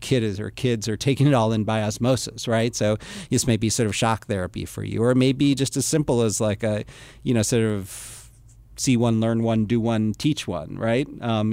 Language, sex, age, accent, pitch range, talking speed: English, male, 40-59, American, 110-130 Hz, 230 wpm